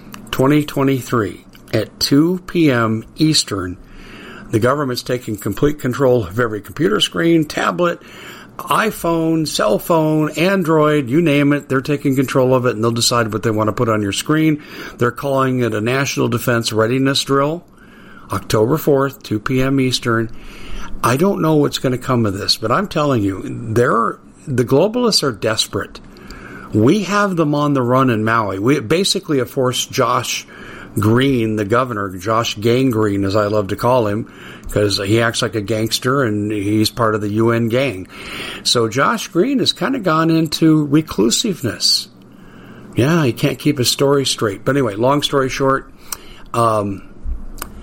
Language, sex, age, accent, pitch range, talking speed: English, male, 50-69, American, 110-145 Hz, 160 wpm